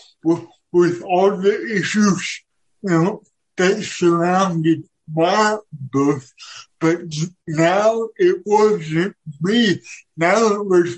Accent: American